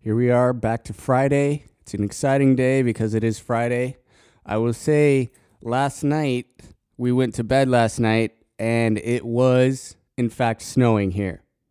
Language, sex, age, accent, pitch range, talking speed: English, male, 20-39, American, 110-130 Hz, 165 wpm